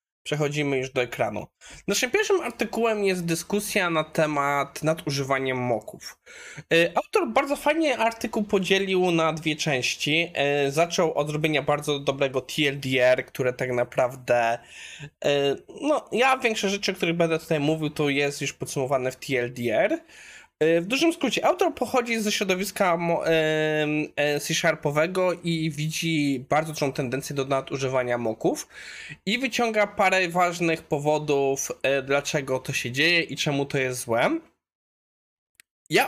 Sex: male